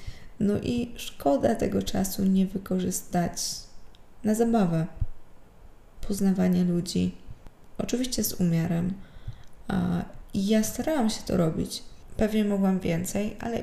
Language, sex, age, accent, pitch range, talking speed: Polish, female, 20-39, native, 175-215 Hz, 100 wpm